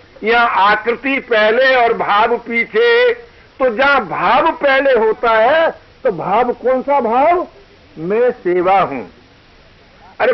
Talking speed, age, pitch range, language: 115 wpm, 60-79, 230-345 Hz, Hindi